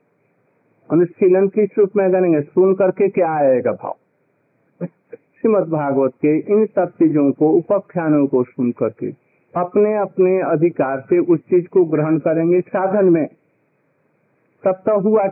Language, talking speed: Hindi, 135 wpm